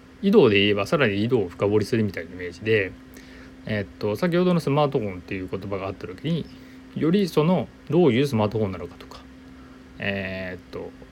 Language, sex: Japanese, male